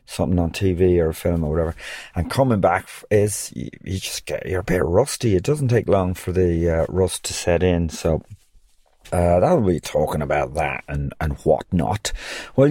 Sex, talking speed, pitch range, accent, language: male, 200 wpm, 90-115 Hz, British, English